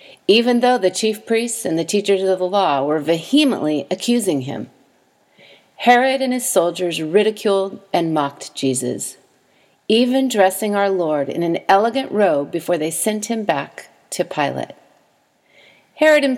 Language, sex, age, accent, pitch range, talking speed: English, female, 40-59, American, 170-220 Hz, 145 wpm